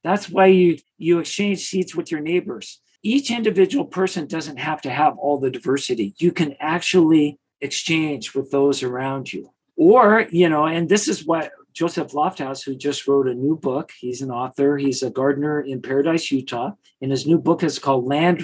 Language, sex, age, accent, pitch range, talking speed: English, male, 50-69, American, 140-185 Hz, 190 wpm